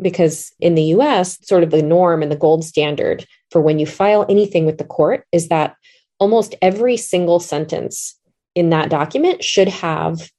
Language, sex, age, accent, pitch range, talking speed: English, female, 30-49, American, 160-200 Hz, 180 wpm